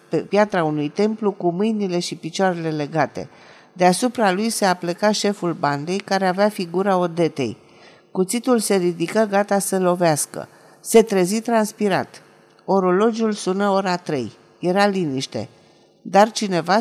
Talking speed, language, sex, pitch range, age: 130 wpm, Romanian, female, 160-200 Hz, 50-69